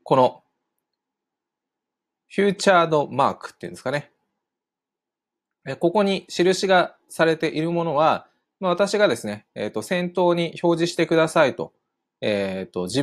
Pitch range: 105-170 Hz